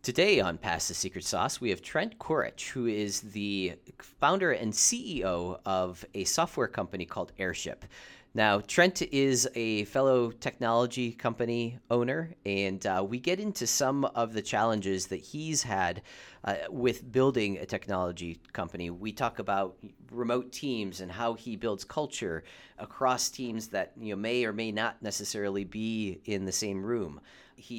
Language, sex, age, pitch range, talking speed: English, male, 40-59, 95-120 Hz, 160 wpm